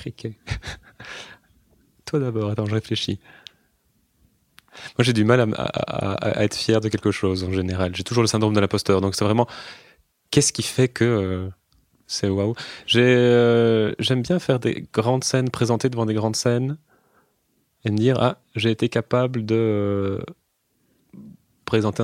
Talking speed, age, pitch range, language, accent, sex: 160 wpm, 20-39, 100-120 Hz, French, French, male